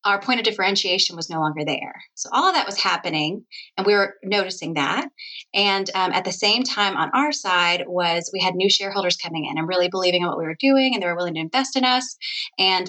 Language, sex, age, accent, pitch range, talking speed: English, female, 20-39, American, 175-205 Hz, 240 wpm